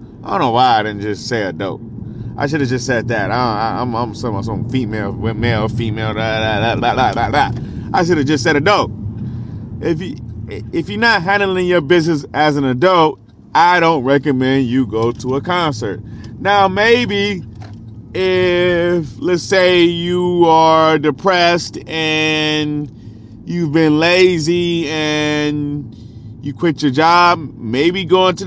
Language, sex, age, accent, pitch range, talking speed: English, male, 30-49, American, 120-170 Hz, 155 wpm